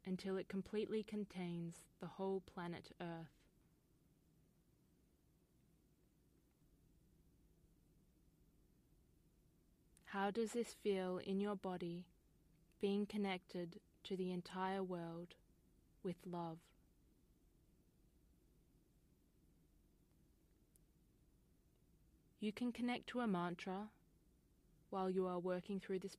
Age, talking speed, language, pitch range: 20-39, 80 wpm, English, 175-200 Hz